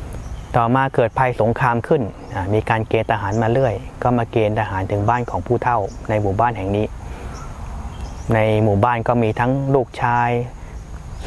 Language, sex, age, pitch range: Thai, male, 20-39, 95-125 Hz